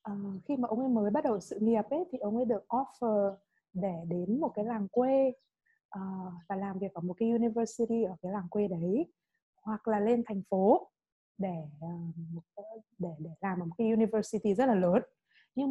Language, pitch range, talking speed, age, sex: Vietnamese, 200-270 Hz, 200 wpm, 20-39, female